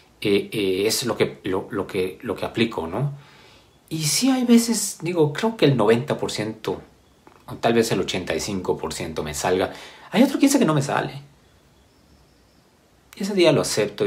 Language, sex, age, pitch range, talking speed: Spanish, male, 40-59, 115-180 Hz, 180 wpm